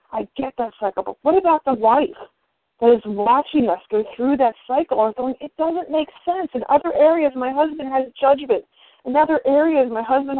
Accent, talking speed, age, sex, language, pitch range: American, 200 wpm, 40-59, female, English, 220-275 Hz